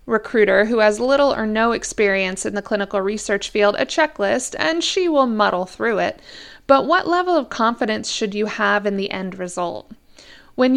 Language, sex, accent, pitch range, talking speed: English, female, American, 205-270 Hz, 185 wpm